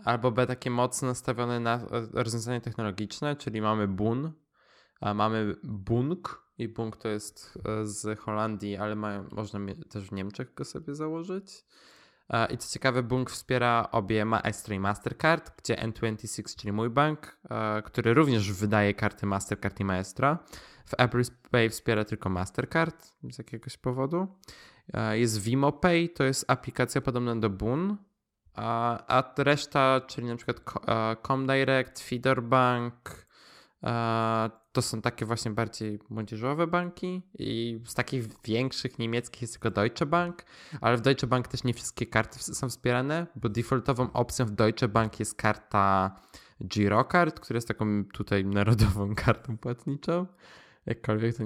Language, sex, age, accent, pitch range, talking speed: Polish, male, 20-39, native, 110-135 Hz, 140 wpm